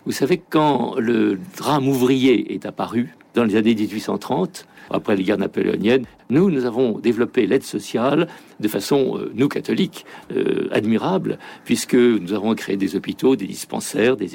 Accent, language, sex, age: French, French, male, 60-79